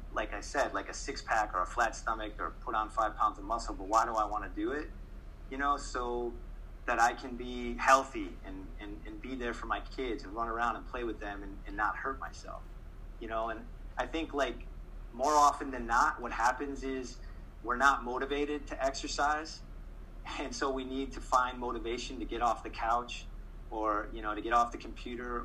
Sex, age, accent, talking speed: male, 30-49, American, 215 wpm